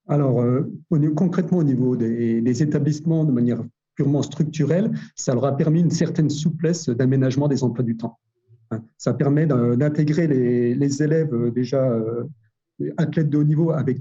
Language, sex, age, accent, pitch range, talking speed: French, male, 50-69, French, 125-155 Hz, 150 wpm